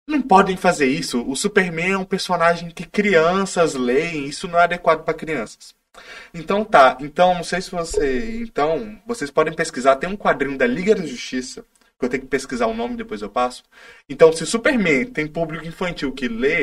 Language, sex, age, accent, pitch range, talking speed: Portuguese, male, 20-39, Brazilian, 145-230 Hz, 195 wpm